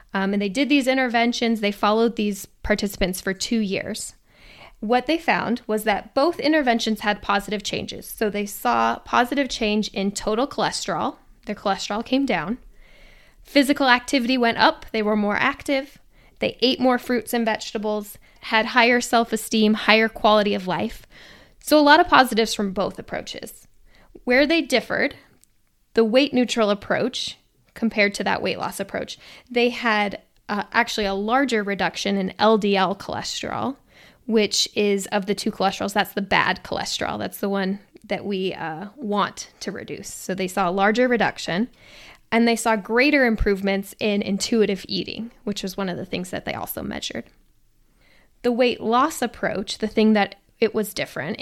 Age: 10-29